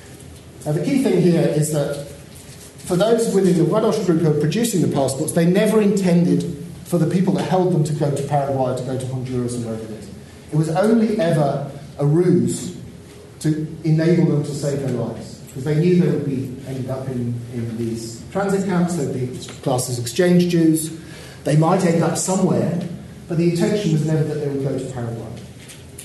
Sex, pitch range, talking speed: male, 135-180 Hz, 205 wpm